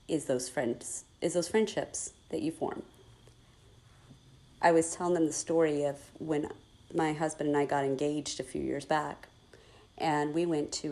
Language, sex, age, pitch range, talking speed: English, female, 40-59, 135-180 Hz, 170 wpm